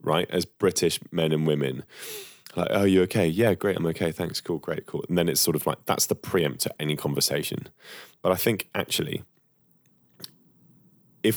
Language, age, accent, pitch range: English, 20-39, British, 75-90 Hz